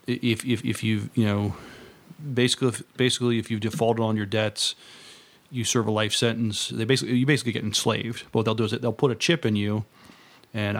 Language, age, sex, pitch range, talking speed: English, 30-49, male, 105-120 Hz, 210 wpm